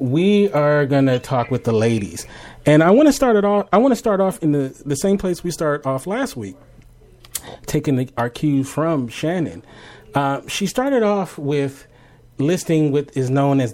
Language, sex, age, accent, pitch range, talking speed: English, male, 30-49, American, 115-150 Hz, 205 wpm